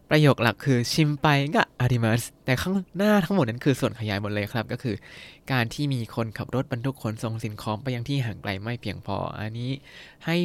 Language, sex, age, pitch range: Thai, male, 20-39, 110-145 Hz